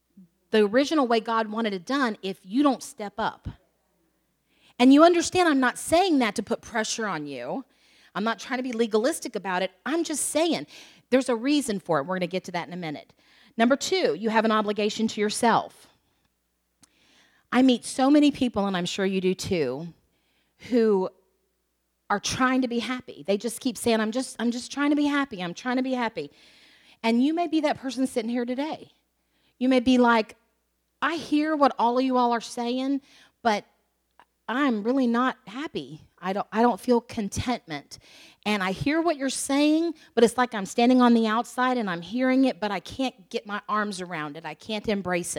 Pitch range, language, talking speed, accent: 200-260 Hz, English, 200 wpm, American